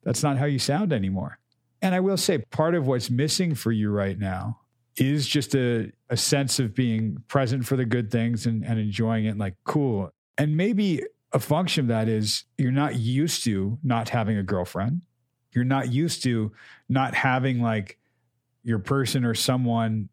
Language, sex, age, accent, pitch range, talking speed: English, male, 50-69, American, 115-140 Hz, 185 wpm